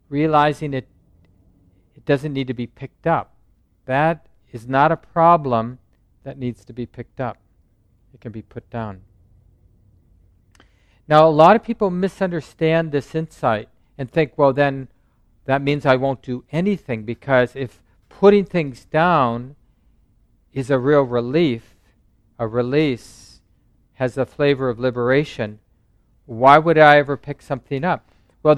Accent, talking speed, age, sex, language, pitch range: American, 140 wpm, 50-69, male, English, 115-150 Hz